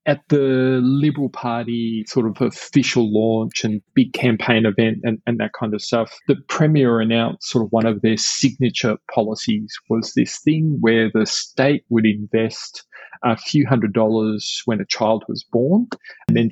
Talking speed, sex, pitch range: 170 wpm, male, 105-130 Hz